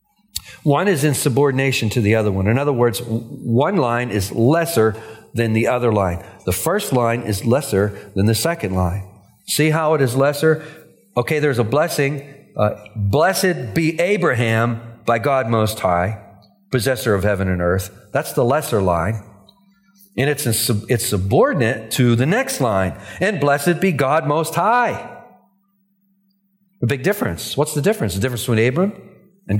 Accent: American